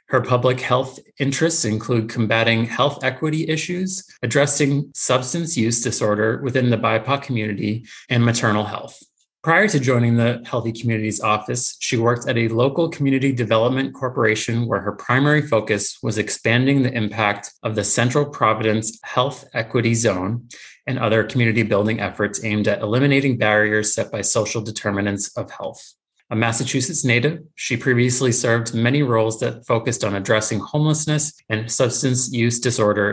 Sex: male